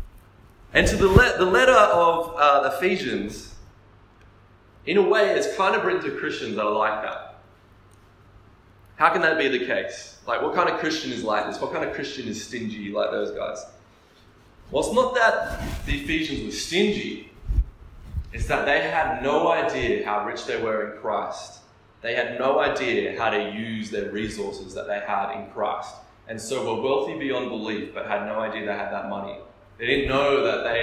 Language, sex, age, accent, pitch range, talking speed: English, male, 20-39, Australian, 105-145 Hz, 190 wpm